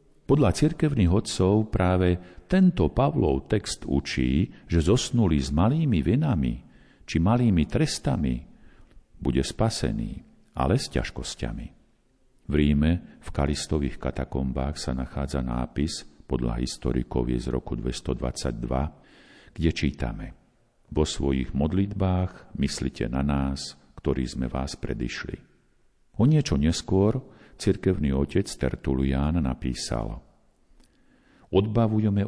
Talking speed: 100 wpm